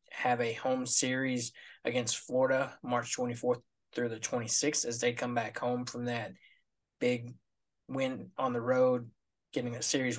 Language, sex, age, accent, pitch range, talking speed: English, male, 20-39, American, 120-130 Hz, 155 wpm